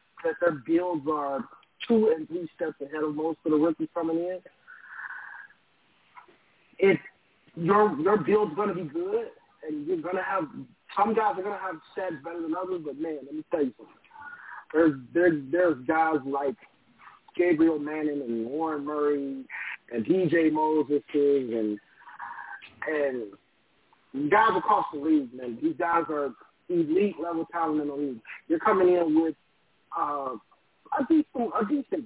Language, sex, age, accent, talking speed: English, male, 30-49, American, 155 wpm